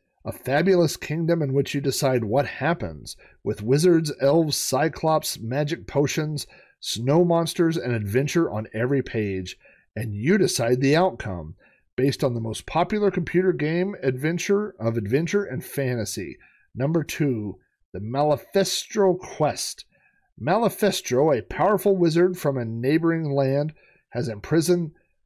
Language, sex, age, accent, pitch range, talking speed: English, male, 40-59, American, 115-170 Hz, 130 wpm